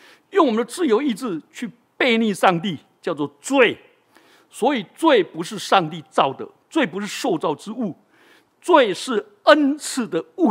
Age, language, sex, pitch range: 60-79, Chinese, male, 180-290 Hz